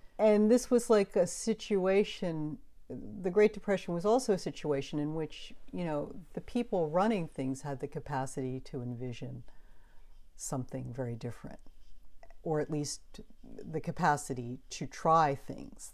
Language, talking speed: English, 140 wpm